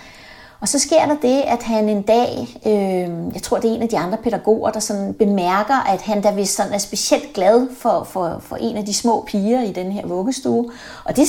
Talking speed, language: 235 wpm, Danish